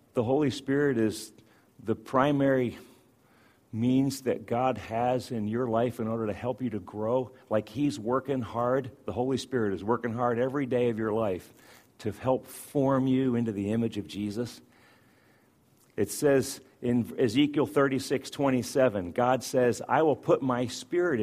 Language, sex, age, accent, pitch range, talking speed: English, male, 50-69, American, 115-145 Hz, 160 wpm